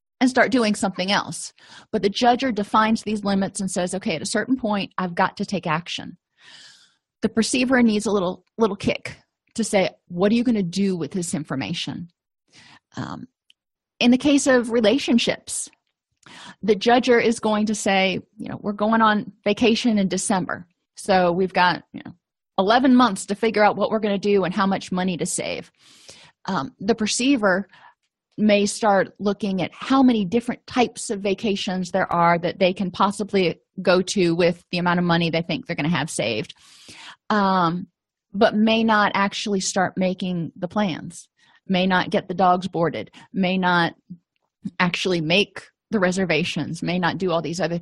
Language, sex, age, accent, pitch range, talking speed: English, female, 30-49, American, 180-215 Hz, 180 wpm